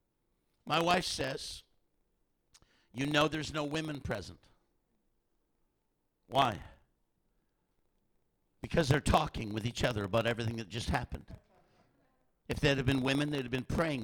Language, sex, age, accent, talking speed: English, male, 60-79, American, 130 wpm